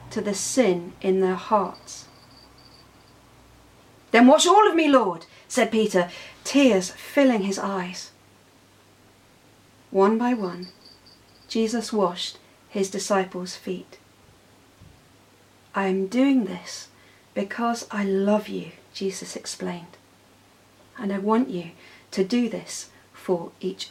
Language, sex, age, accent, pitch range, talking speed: English, female, 40-59, British, 180-225 Hz, 110 wpm